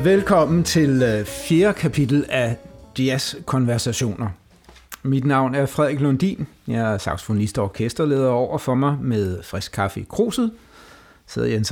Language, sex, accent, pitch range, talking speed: Danish, male, native, 105-145 Hz, 130 wpm